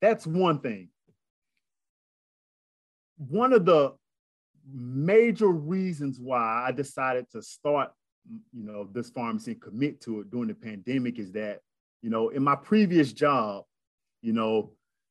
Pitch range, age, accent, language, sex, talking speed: 115-145 Hz, 30-49, American, English, male, 135 wpm